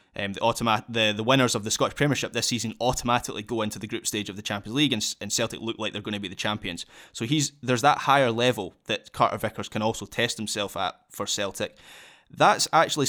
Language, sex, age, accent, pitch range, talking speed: English, male, 20-39, British, 110-140 Hz, 235 wpm